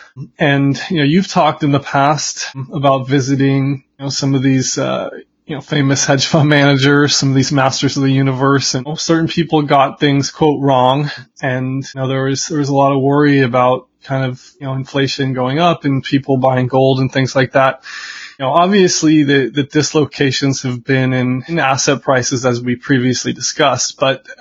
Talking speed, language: 200 wpm, English